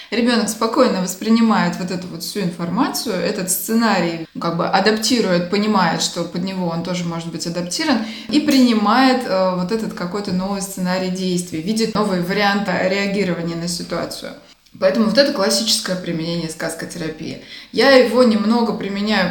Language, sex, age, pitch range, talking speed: Russian, female, 20-39, 180-230 Hz, 145 wpm